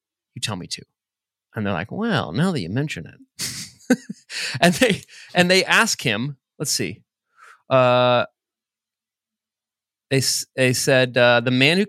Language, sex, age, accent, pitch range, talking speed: English, male, 30-49, American, 120-165 Hz, 145 wpm